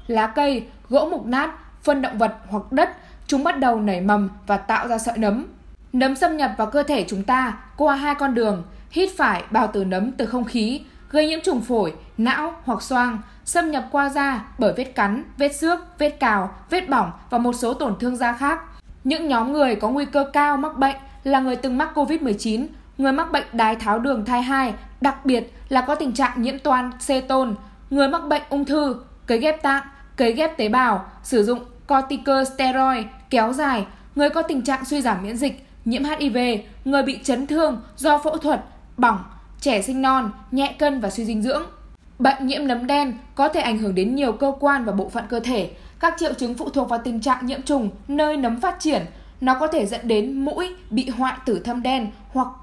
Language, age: Vietnamese, 10-29